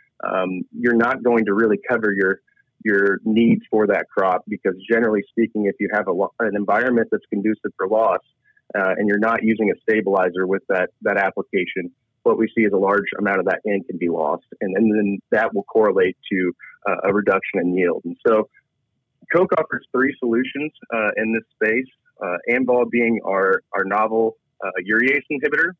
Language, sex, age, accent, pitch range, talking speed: English, male, 30-49, American, 100-115 Hz, 190 wpm